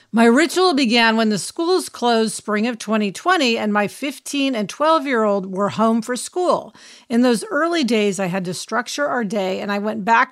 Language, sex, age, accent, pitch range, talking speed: English, female, 50-69, American, 210-270 Hz, 190 wpm